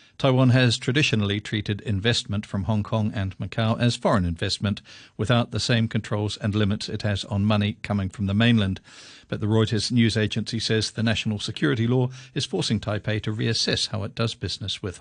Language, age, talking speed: English, 50-69, 190 wpm